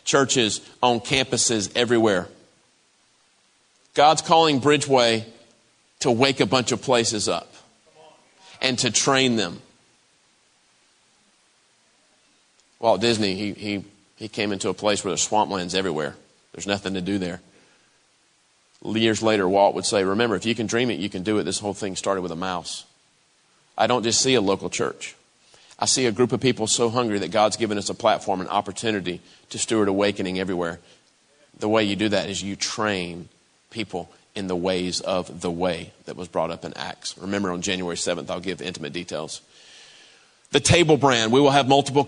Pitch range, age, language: 100-125 Hz, 40-59, English